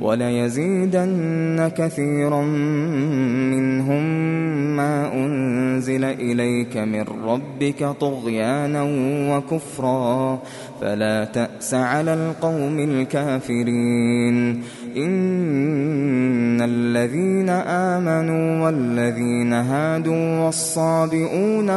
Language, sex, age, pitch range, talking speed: Arabic, male, 20-39, 130-165 Hz, 60 wpm